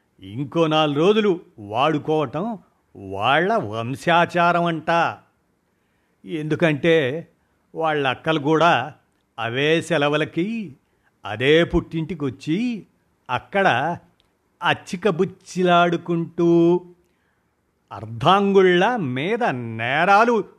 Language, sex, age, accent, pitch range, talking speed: Telugu, male, 50-69, native, 130-175 Hz, 60 wpm